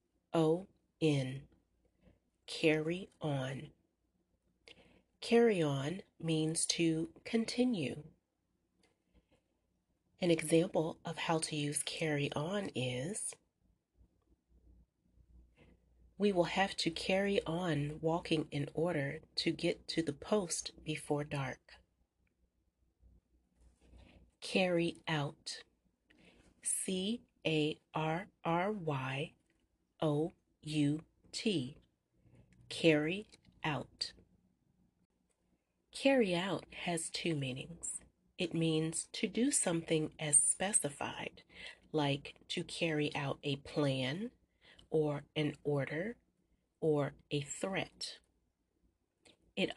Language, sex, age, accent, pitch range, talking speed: English, female, 40-59, American, 145-175 Hz, 75 wpm